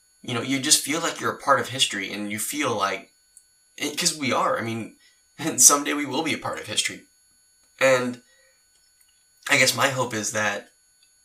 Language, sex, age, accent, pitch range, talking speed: English, male, 10-29, American, 105-125 Hz, 195 wpm